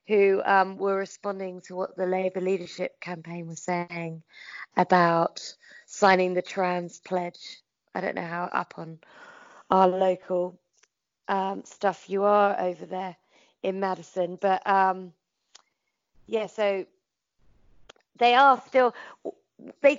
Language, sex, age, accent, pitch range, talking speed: English, female, 30-49, British, 180-205 Hz, 125 wpm